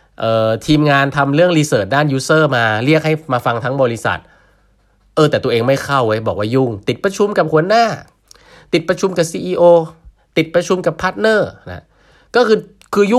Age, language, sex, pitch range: 20-39, Thai, male, 115-170 Hz